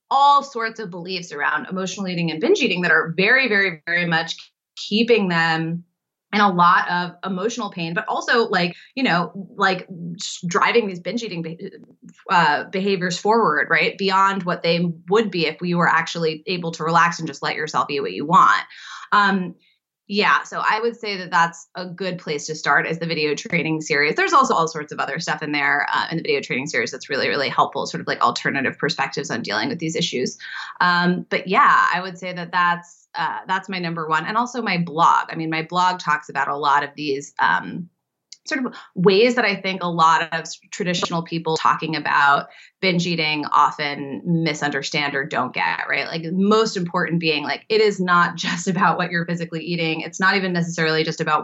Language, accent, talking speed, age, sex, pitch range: English, American, 205 wpm, 20-39, female, 160-200 Hz